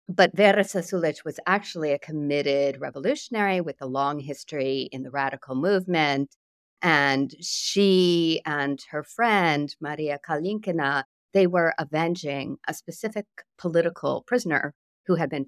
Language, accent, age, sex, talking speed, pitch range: English, American, 50-69, female, 130 wpm, 150-200 Hz